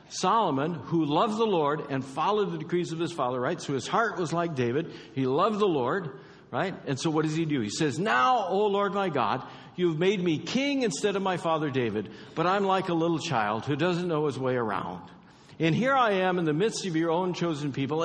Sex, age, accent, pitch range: male, 60-79, American, 130-190 Hz